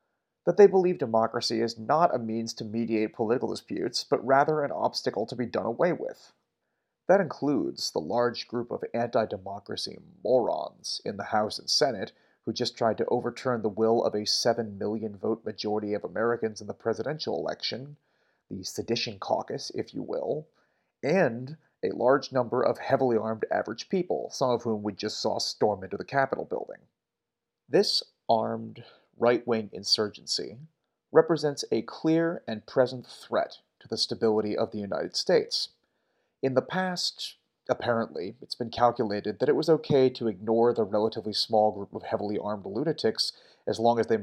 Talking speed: 165 wpm